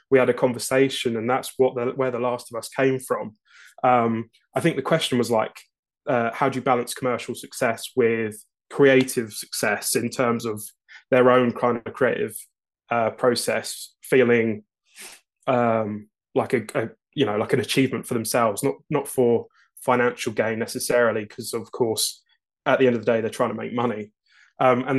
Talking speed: 180 wpm